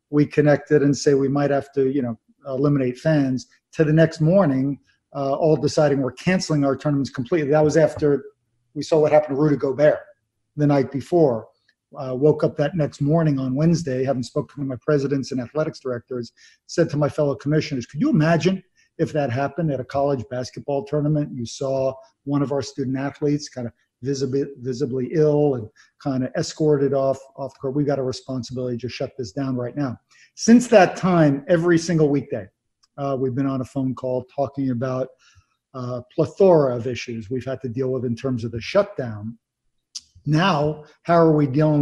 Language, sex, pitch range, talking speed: English, male, 130-150 Hz, 190 wpm